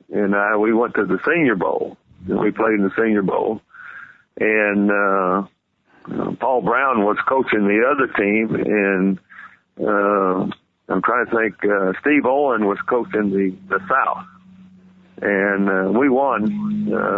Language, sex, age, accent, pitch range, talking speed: English, male, 50-69, American, 100-120 Hz, 145 wpm